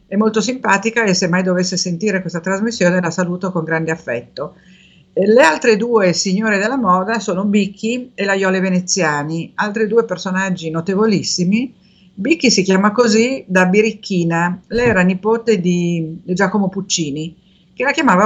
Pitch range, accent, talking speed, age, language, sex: 175-220 Hz, native, 150 wpm, 50-69, Italian, female